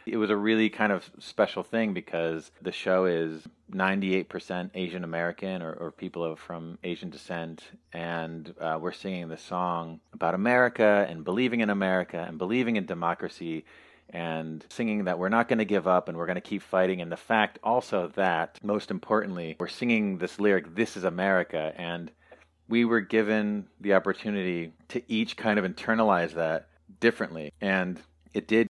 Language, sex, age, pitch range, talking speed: English, male, 30-49, 85-105 Hz, 170 wpm